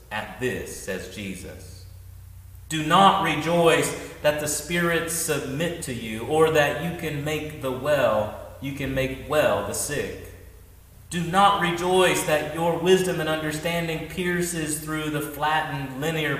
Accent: American